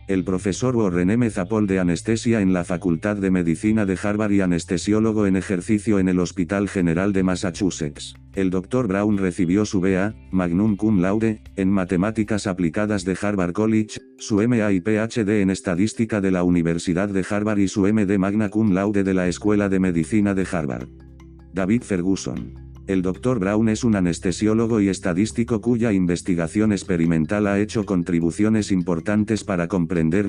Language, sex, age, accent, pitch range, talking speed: English, male, 50-69, Spanish, 90-105 Hz, 160 wpm